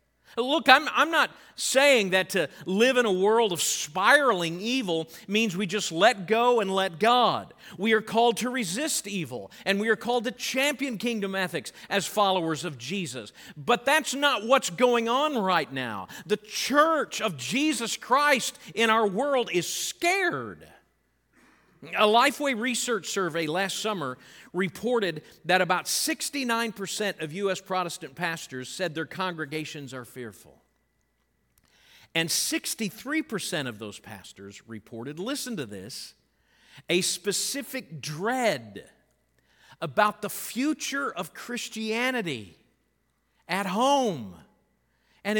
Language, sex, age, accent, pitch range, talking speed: English, male, 50-69, American, 175-250 Hz, 130 wpm